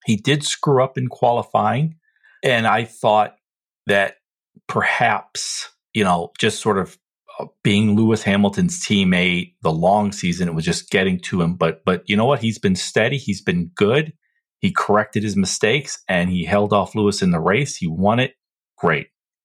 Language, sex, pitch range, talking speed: English, male, 100-145 Hz, 175 wpm